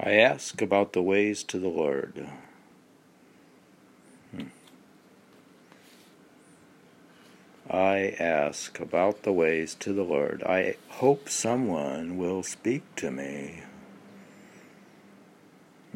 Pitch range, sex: 90-125 Hz, male